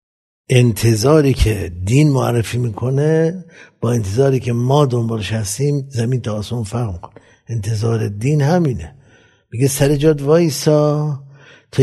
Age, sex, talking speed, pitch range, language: 60-79, male, 110 wpm, 100-135 Hz, Persian